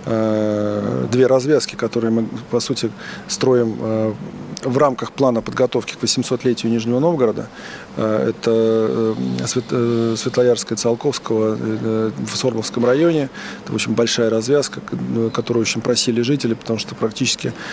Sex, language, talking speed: male, Russian, 105 wpm